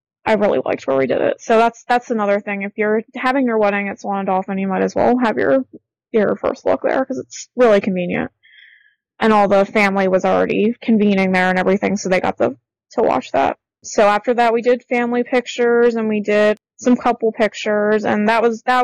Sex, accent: female, American